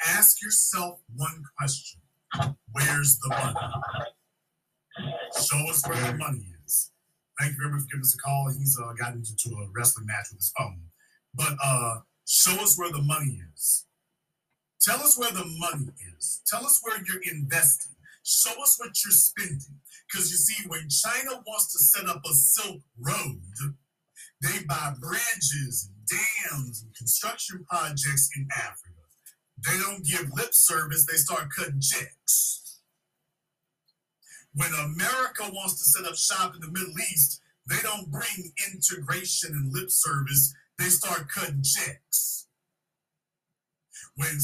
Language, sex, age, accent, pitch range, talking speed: English, male, 40-59, American, 135-180 Hz, 145 wpm